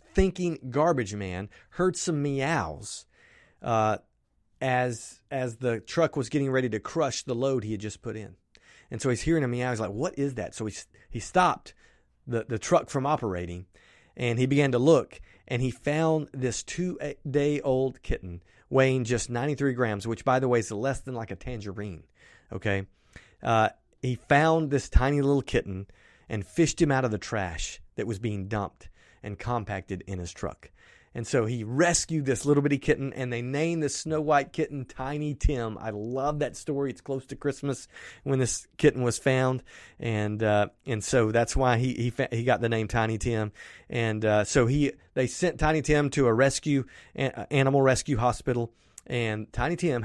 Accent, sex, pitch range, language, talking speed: American, male, 110-140 Hz, English, 190 wpm